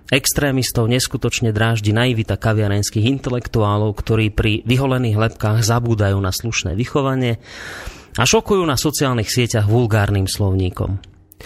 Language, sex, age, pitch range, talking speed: Slovak, male, 30-49, 105-145 Hz, 110 wpm